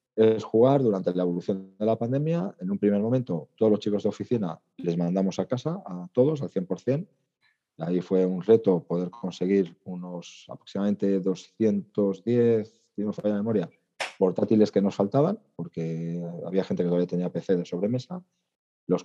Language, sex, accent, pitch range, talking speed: Spanish, male, Spanish, 95-120 Hz, 165 wpm